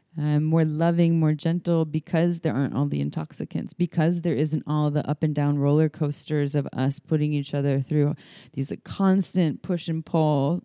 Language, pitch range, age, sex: English, 150-180 Hz, 20-39, female